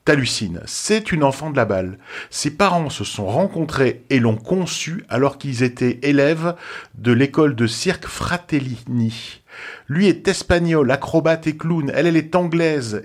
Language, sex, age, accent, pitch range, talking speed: French, male, 50-69, French, 125-165 Hz, 155 wpm